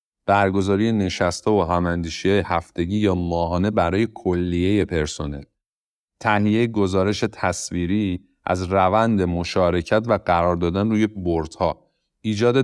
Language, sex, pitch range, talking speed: Persian, male, 90-110 Hz, 105 wpm